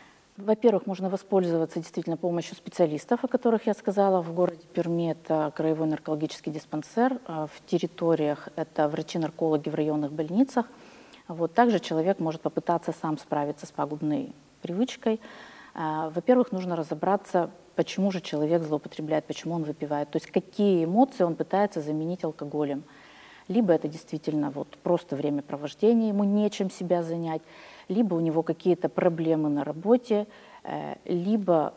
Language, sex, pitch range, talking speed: Russian, female, 160-195 Hz, 130 wpm